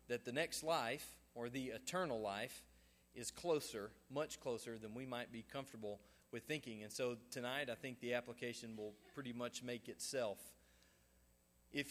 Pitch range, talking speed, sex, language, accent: 120-150 Hz, 160 wpm, male, English, American